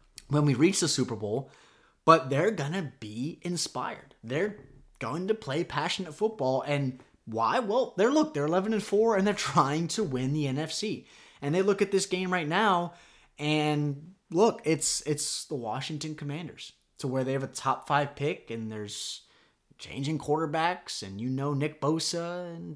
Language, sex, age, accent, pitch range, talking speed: English, male, 20-39, American, 140-190 Hz, 175 wpm